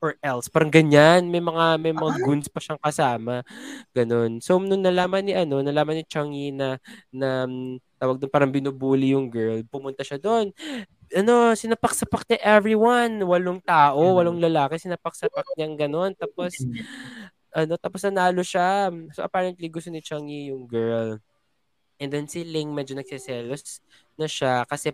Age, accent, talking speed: 20-39, native, 155 wpm